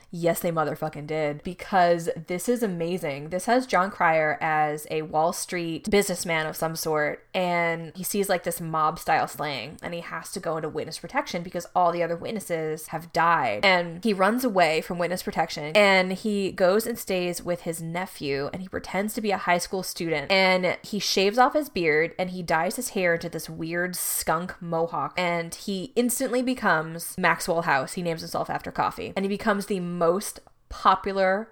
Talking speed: 190 wpm